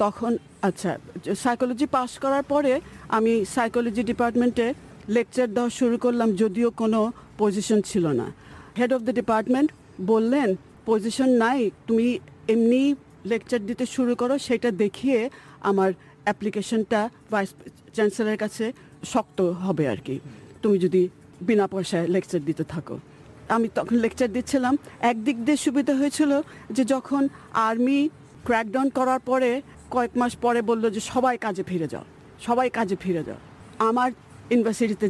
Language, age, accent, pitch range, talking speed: Bengali, 50-69, native, 195-245 Hz, 135 wpm